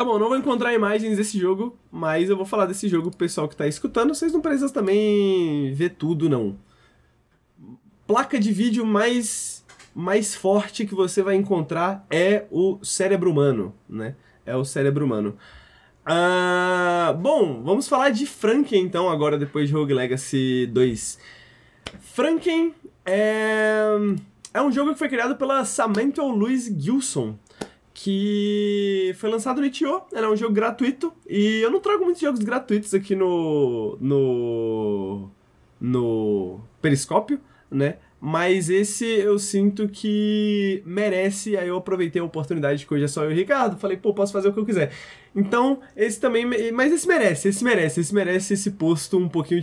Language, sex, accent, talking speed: Portuguese, male, Brazilian, 160 wpm